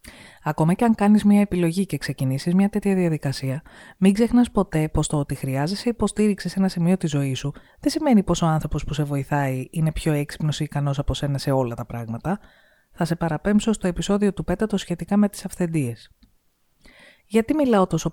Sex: female